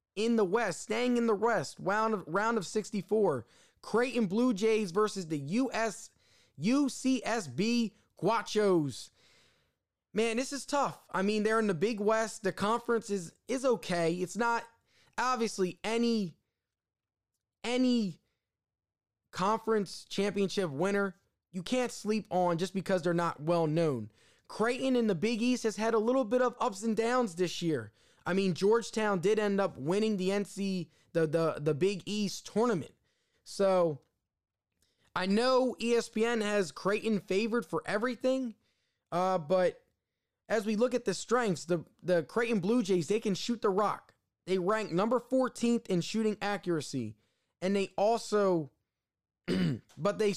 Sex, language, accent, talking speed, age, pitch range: male, English, American, 145 wpm, 20-39, 170-225 Hz